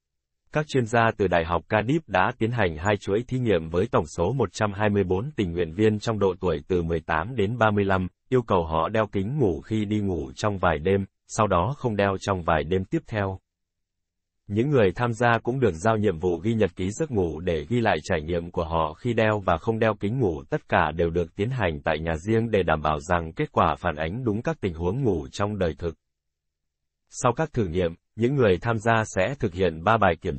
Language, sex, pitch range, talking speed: Vietnamese, male, 85-115 Hz, 230 wpm